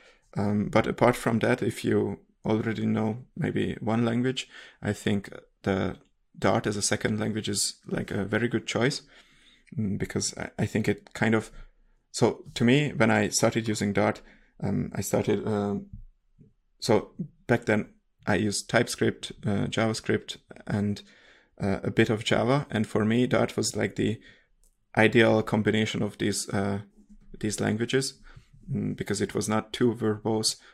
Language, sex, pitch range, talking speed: English, male, 105-115 Hz, 155 wpm